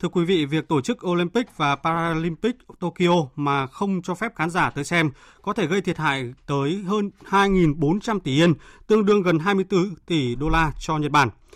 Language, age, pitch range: Vietnamese, 20-39, 145-185 Hz